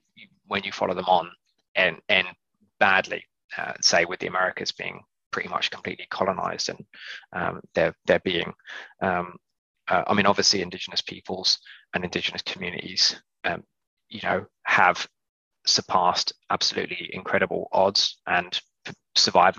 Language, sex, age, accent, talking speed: English, male, 20-39, British, 130 wpm